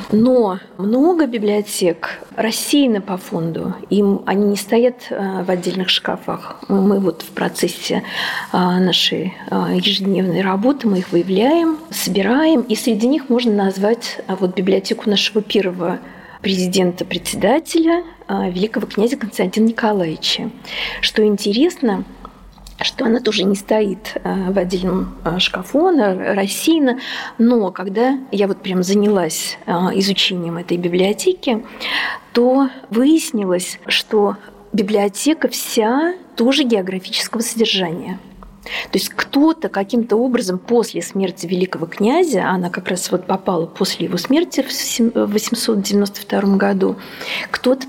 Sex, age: female, 40-59